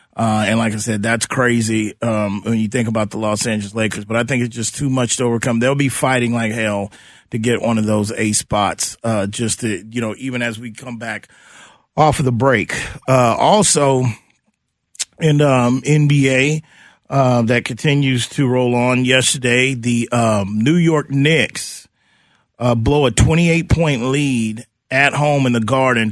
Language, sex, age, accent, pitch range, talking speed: English, male, 30-49, American, 115-140 Hz, 180 wpm